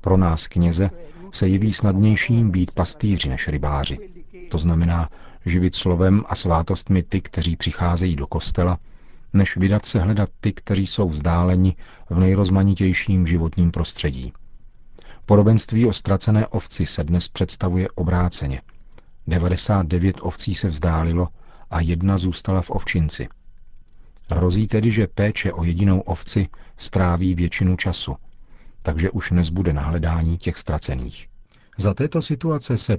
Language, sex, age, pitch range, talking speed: Czech, male, 40-59, 85-105 Hz, 125 wpm